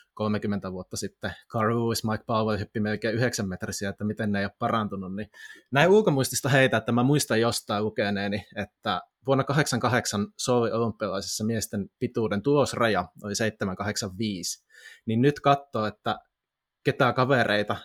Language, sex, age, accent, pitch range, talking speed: Finnish, male, 20-39, native, 105-130 Hz, 140 wpm